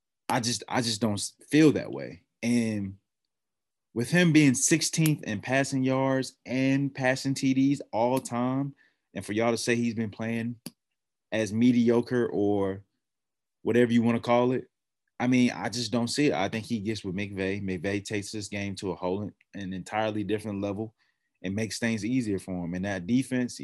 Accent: American